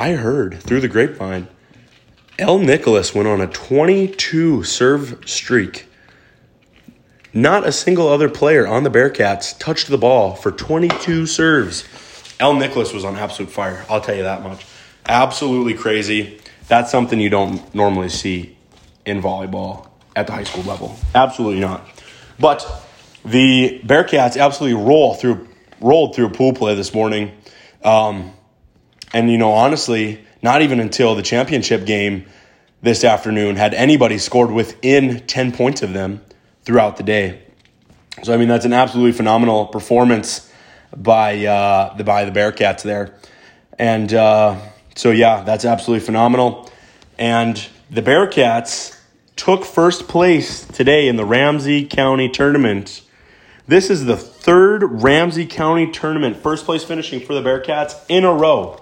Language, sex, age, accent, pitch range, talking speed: English, male, 20-39, American, 105-135 Hz, 145 wpm